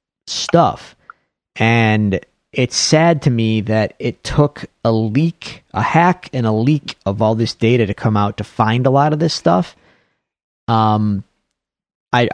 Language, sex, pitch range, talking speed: English, male, 100-120 Hz, 155 wpm